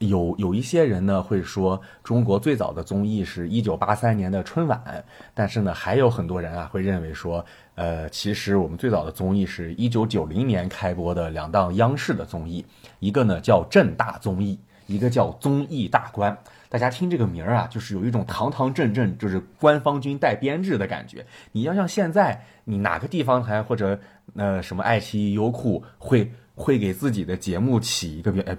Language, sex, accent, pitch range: Chinese, male, native, 95-125 Hz